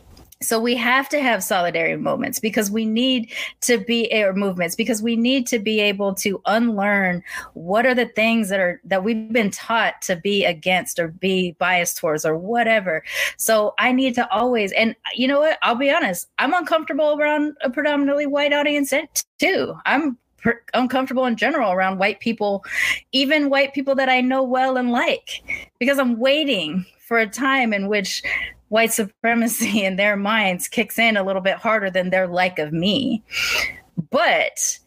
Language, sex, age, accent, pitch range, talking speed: English, female, 20-39, American, 185-245 Hz, 175 wpm